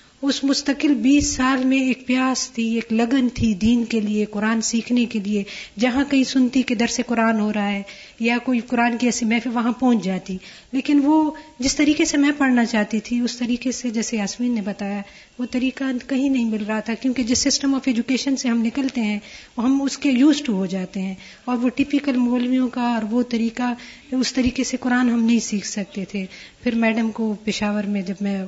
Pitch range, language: 205-255 Hz, Urdu